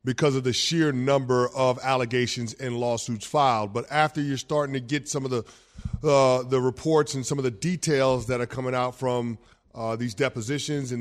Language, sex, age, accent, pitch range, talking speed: English, male, 30-49, American, 125-150 Hz, 195 wpm